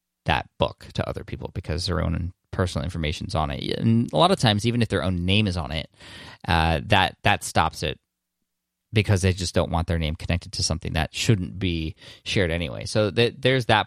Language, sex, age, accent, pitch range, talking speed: English, male, 20-39, American, 90-110 Hz, 215 wpm